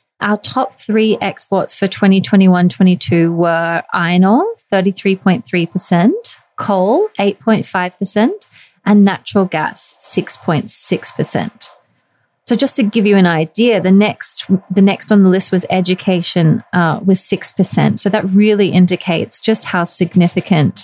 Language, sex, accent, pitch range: English, female, Australian, 175-210 Hz